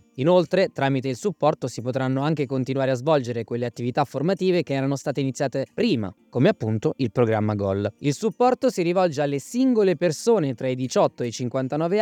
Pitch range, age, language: 125-185 Hz, 20-39, Italian